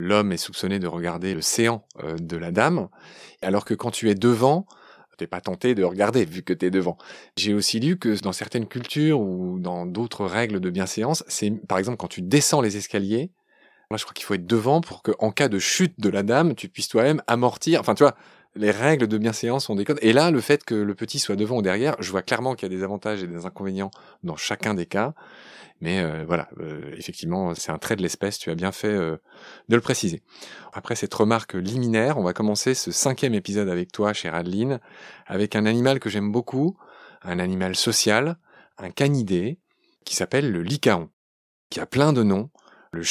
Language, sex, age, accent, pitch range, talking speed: French, male, 30-49, French, 90-120 Hz, 220 wpm